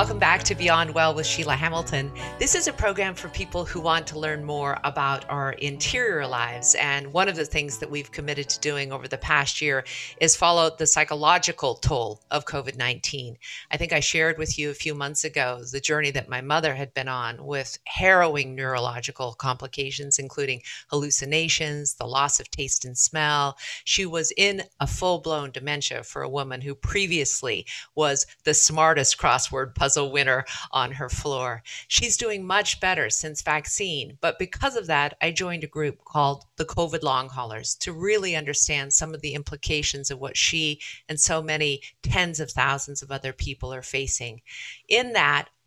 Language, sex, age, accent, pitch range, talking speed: English, female, 50-69, American, 135-160 Hz, 180 wpm